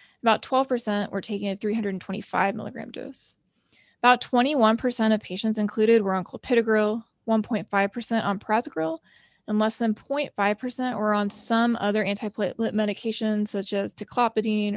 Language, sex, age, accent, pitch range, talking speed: English, female, 20-39, American, 210-240 Hz, 130 wpm